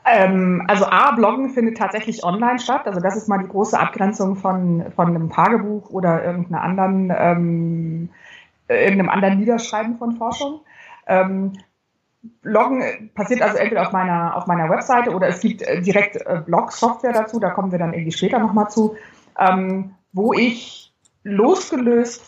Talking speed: 150 wpm